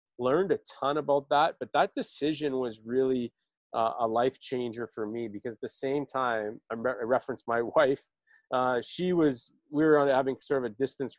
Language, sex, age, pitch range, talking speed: English, male, 20-39, 110-140 Hz, 195 wpm